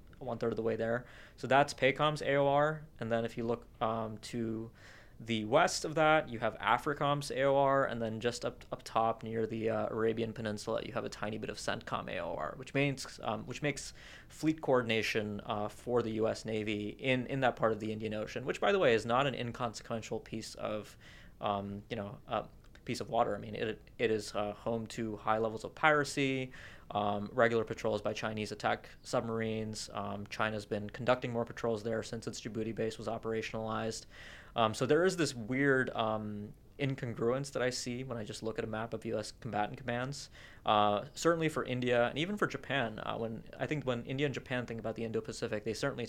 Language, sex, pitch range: English, male, 110-125 Hz